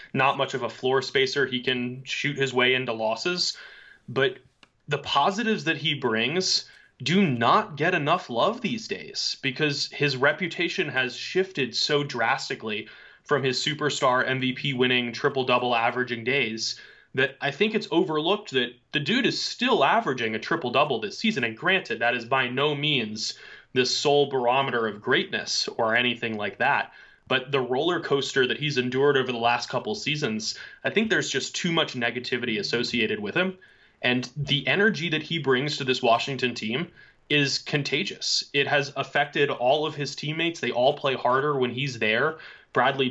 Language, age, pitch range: English, 20-39, 125-150 Hz